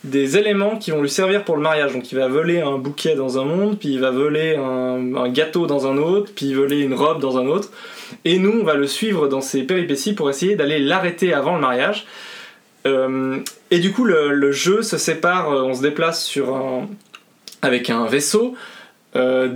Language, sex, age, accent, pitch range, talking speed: French, male, 20-39, French, 135-180 Hz, 220 wpm